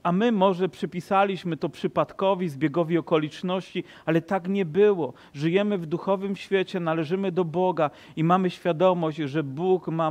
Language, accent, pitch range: Polish, native, 160-190 Hz